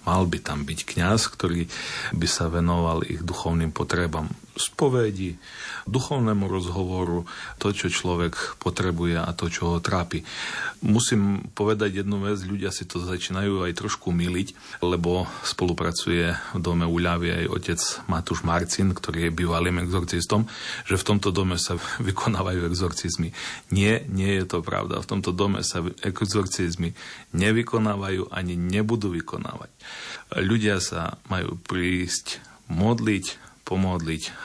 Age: 40-59